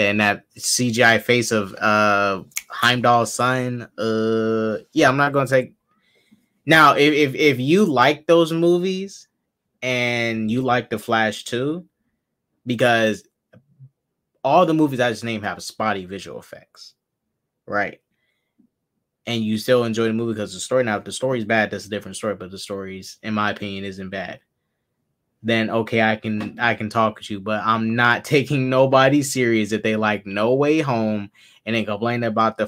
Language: English